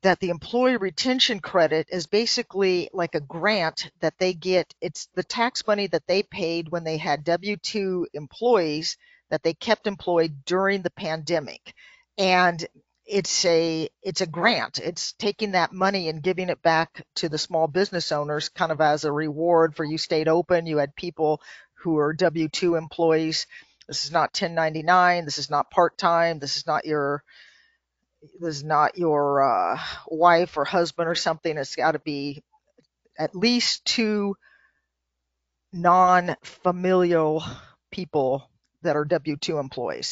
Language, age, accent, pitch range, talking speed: English, 50-69, American, 155-185 Hz, 150 wpm